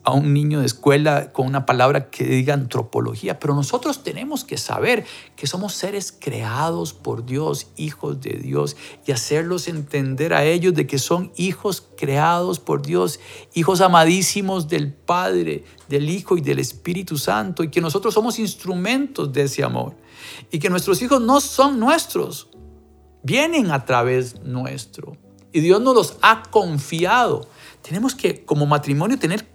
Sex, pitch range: male, 130-190 Hz